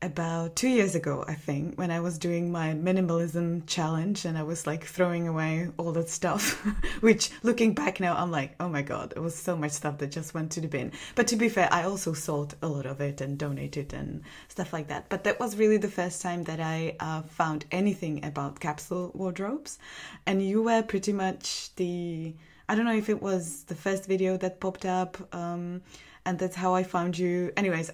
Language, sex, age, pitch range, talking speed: English, female, 20-39, 165-195 Hz, 215 wpm